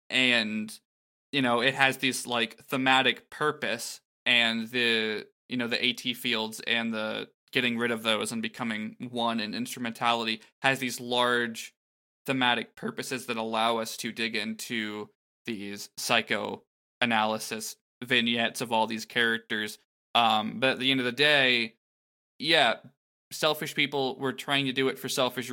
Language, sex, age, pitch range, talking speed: English, male, 20-39, 110-130 Hz, 150 wpm